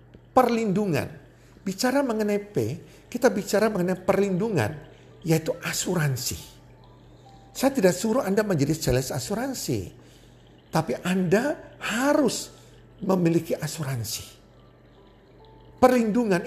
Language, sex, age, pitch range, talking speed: Indonesian, male, 50-69, 145-210 Hz, 85 wpm